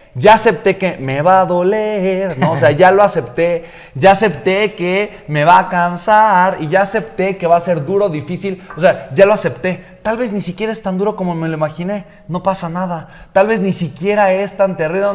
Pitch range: 155-200 Hz